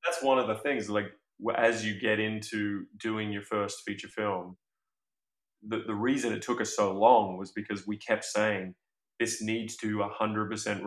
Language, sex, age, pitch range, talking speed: English, male, 20-39, 105-115 Hz, 175 wpm